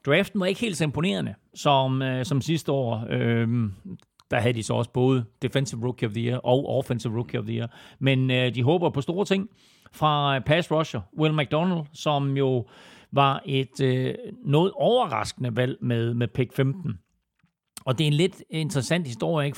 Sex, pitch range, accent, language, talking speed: male, 125-165 Hz, native, Danish, 185 wpm